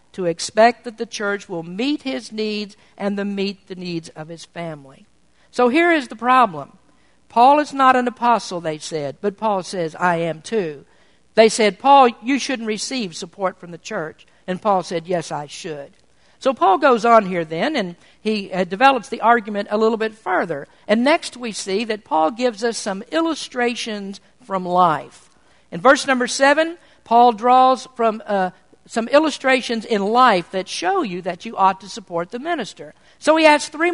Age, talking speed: 50-69, 185 wpm